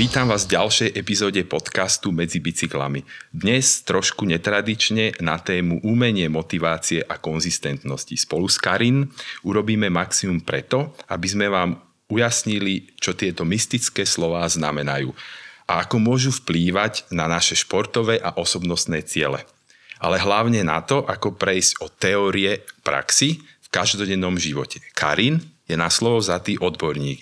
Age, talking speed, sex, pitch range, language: 40-59, 135 wpm, male, 85-110 Hz, Slovak